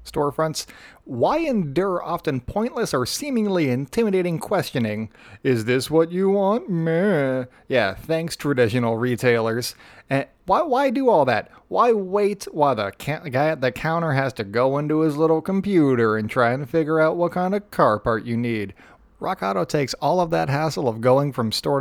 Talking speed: 175 wpm